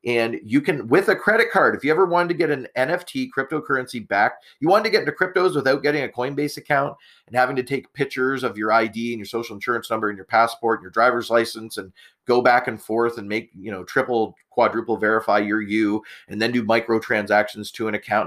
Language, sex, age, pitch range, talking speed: English, male, 40-59, 115-165 Hz, 225 wpm